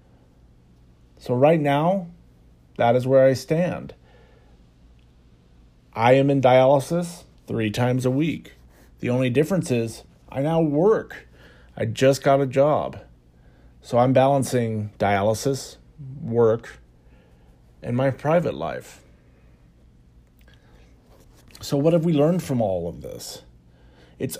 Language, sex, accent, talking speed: English, male, American, 115 wpm